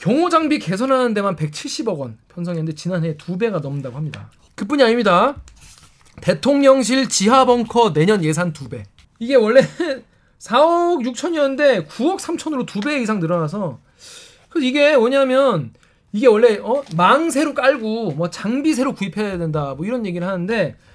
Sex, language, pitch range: male, Korean, 165-275 Hz